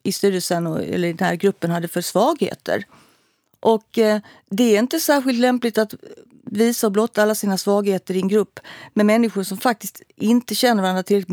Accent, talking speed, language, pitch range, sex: native, 180 wpm, Swedish, 190-240 Hz, female